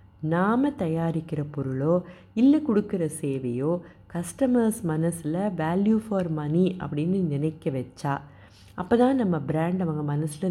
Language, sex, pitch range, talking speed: Tamil, female, 150-195 Hz, 115 wpm